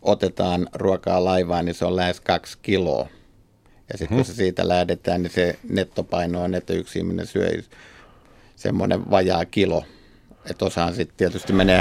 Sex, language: male, Finnish